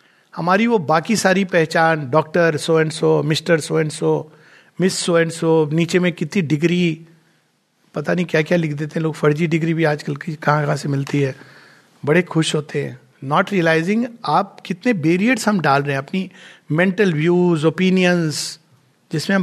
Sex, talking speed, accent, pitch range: male, 175 wpm, native, 150-185 Hz